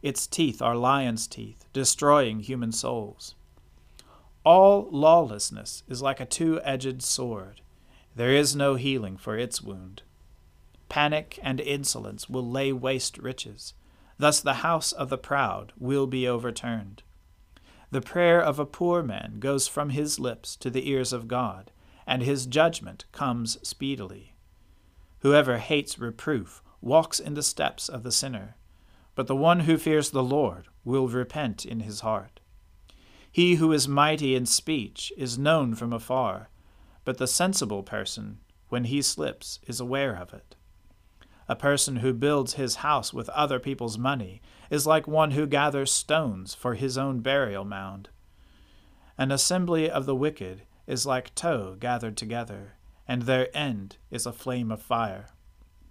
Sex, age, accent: male, 40-59, American